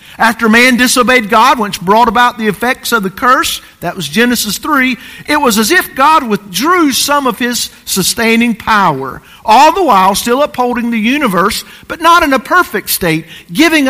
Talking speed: 175 wpm